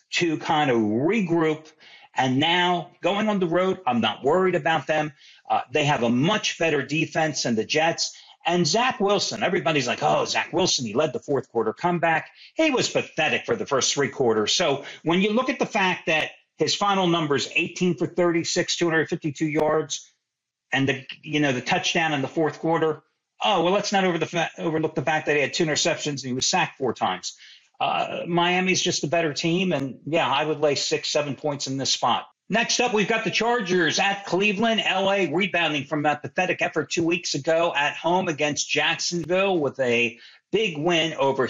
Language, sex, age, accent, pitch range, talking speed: English, male, 50-69, American, 150-190 Hz, 200 wpm